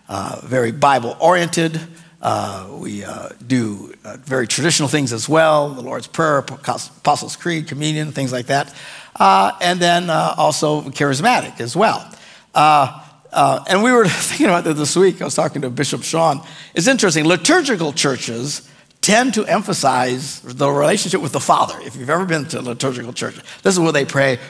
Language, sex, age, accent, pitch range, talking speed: English, male, 60-79, American, 135-180 Hz, 175 wpm